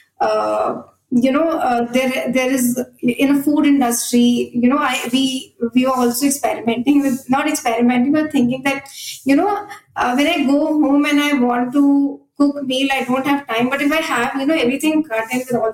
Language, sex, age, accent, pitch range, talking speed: English, female, 20-39, Indian, 240-290 Hz, 200 wpm